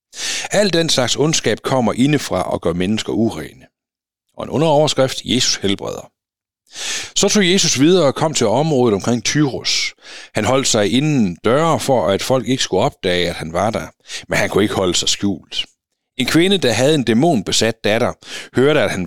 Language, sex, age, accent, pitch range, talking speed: Danish, male, 60-79, native, 105-150 Hz, 180 wpm